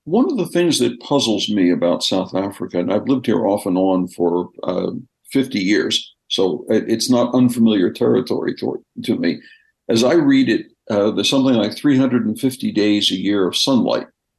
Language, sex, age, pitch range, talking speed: English, male, 60-79, 110-150 Hz, 195 wpm